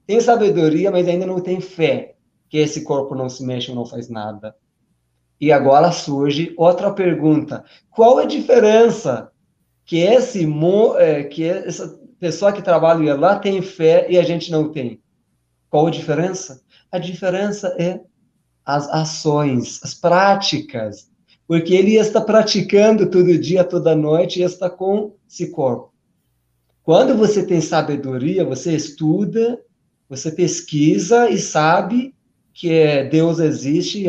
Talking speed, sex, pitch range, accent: 135 wpm, male, 145-185 Hz, Brazilian